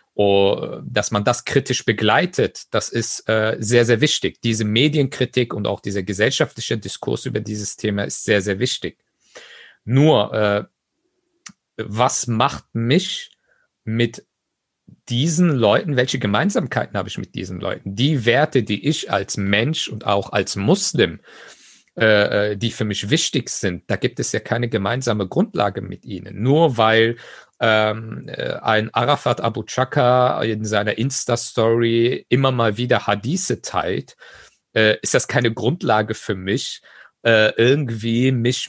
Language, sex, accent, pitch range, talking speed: German, male, German, 105-130 Hz, 140 wpm